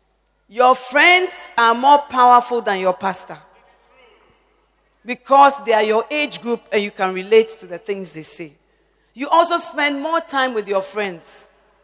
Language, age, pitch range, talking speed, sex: English, 40-59, 210-280 Hz, 155 wpm, female